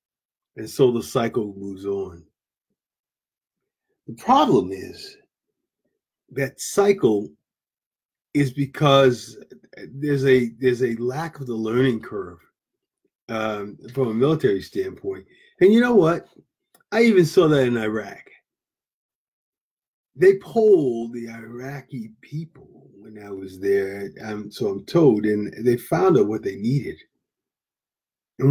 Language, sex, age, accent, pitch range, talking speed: English, male, 40-59, American, 110-170 Hz, 120 wpm